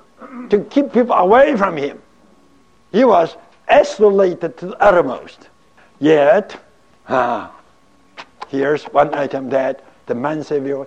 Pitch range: 160-250 Hz